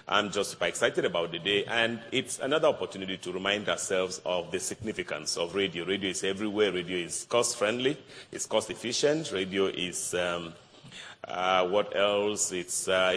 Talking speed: 155 wpm